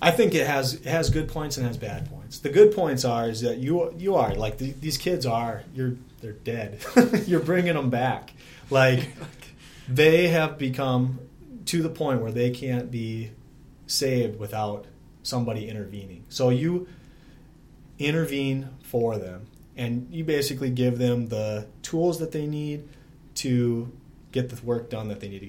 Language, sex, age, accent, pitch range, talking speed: English, male, 30-49, American, 110-140 Hz, 170 wpm